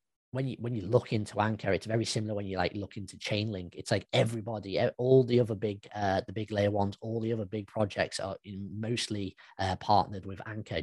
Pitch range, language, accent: 95-115 Hz, English, British